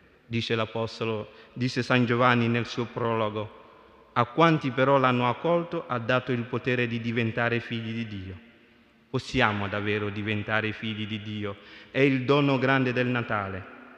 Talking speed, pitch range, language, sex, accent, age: 145 wpm, 115-135 Hz, Italian, male, native, 30-49